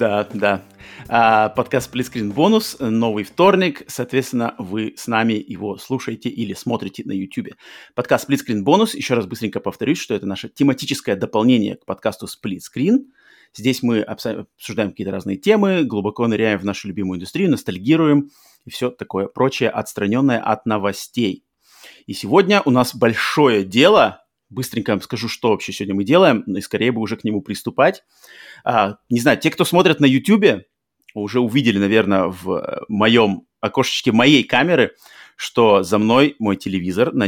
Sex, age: male, 30-49